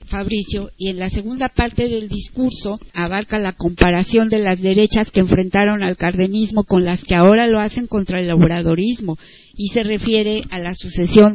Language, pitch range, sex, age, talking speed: Spanish, 175-225 Hz, female, 50-69, 175 wpm